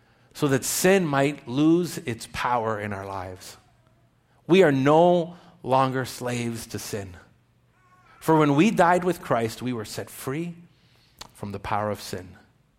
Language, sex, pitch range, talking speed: English, male, 110-145 Hz, 150 wpm